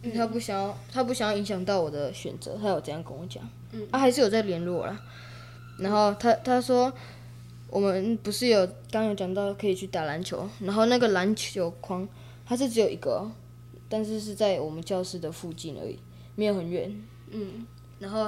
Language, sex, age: Chinese, female, 10-29